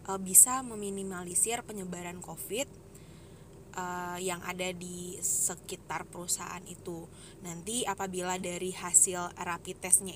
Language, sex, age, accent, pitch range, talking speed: Indonesian, female, 20-39, native, 180-200 Hz, 95 wpm